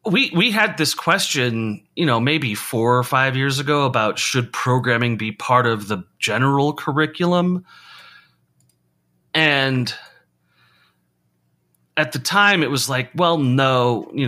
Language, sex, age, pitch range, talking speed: English, male, 30-49, 100-145 Hz, 135 wpm